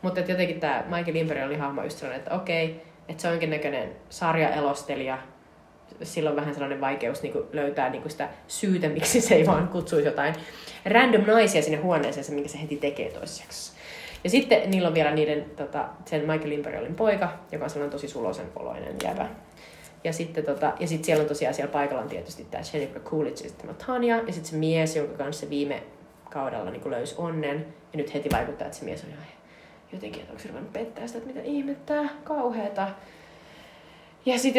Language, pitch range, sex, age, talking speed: Finnish, 150-210 Hz, female, 30-49, 180 wpm